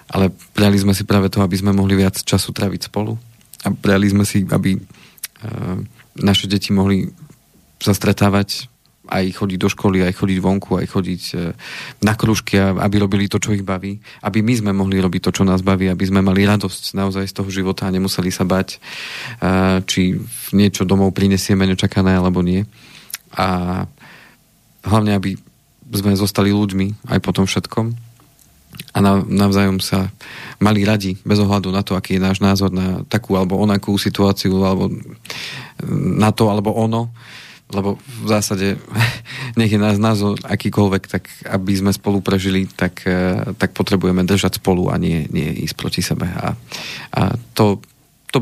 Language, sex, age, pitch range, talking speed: Slovak, male, 40-59, 95-105 Hz, 160 wpm